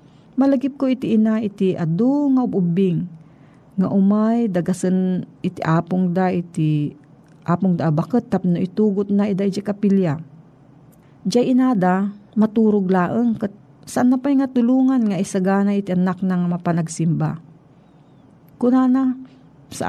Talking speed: 125 wpm